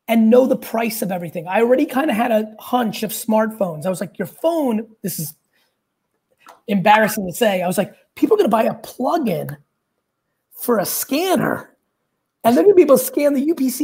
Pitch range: 195-245 Hz